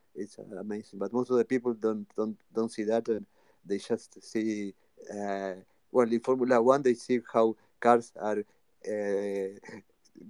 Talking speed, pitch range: 155 wpm, 115-185 Hz